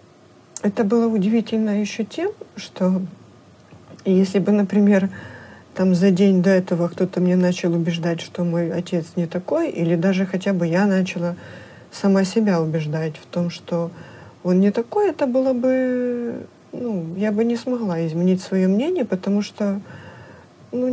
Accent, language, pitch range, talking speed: native, Russian, 175-215 Hz, 150 wpm